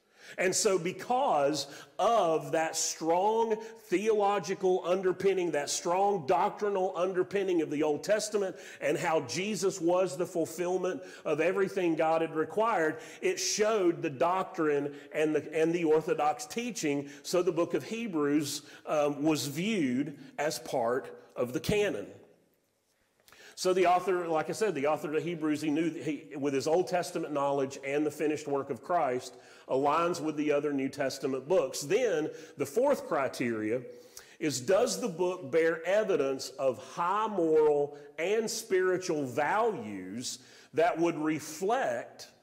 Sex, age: male, 40-59